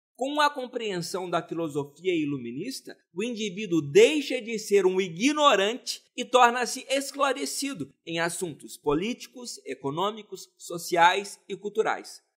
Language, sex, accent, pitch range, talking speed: Portuguese, male, Brazilian, 185-265 Hz, 110 wpm